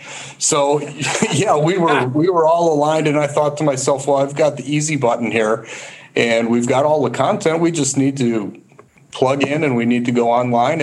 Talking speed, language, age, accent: 210 wpm, English, 40-59, American